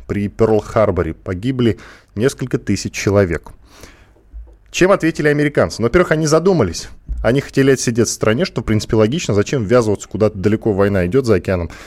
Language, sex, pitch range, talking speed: Russian, male, 105-160 Hz, 150 wpm